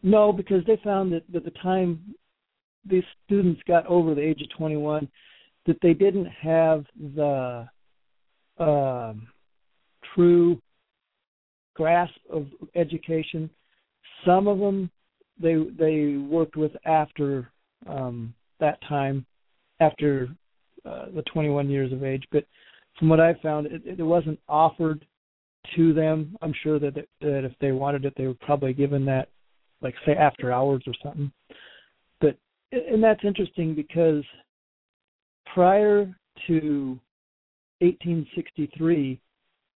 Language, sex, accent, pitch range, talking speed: English, male, American, 140-175 Hz, 125 wpm